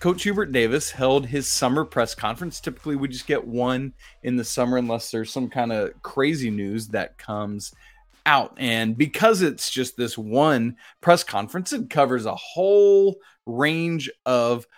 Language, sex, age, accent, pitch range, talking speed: English, male, 30-49, American, 125-175 Hz, 160 wpm